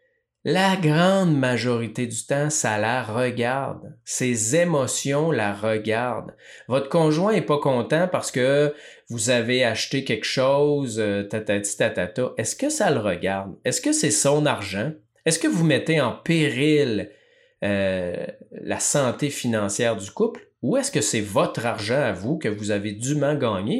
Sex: male